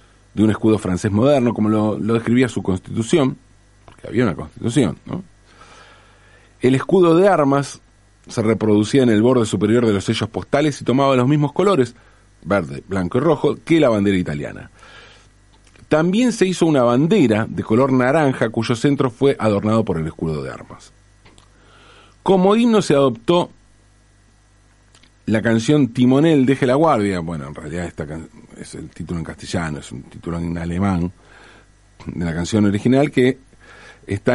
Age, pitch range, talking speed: 40-59, 100-130 Hz, 160 wpm